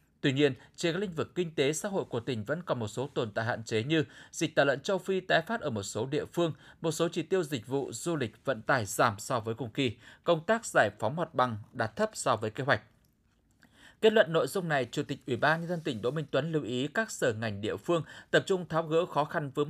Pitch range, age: 130-180 Hz, 20-39